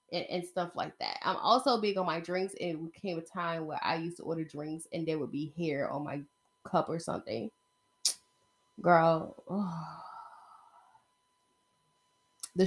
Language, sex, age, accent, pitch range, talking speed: English, female, 10-29, American, 160-220 Hz, 155 wpm